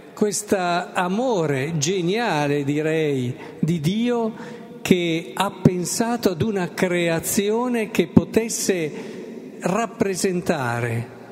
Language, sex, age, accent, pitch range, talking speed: Italian, male, 50-69, native, 145-205 Hz, 80 wpm